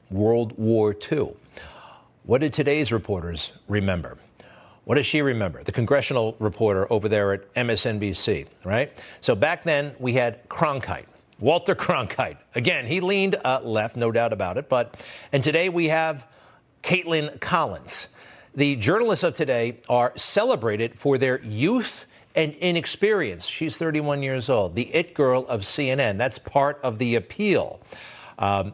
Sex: male